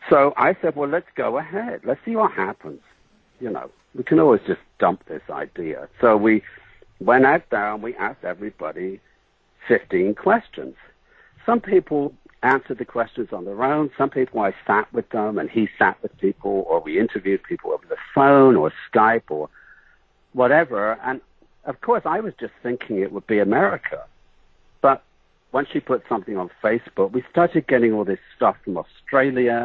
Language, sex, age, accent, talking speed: English, male, 60-79, British, 175 wpm